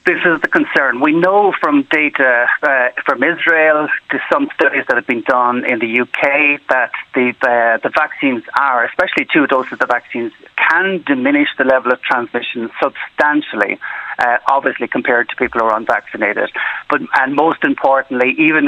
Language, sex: English, male